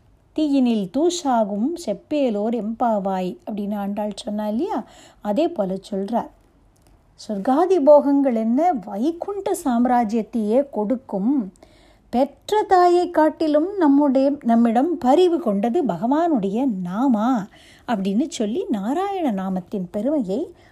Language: Tamil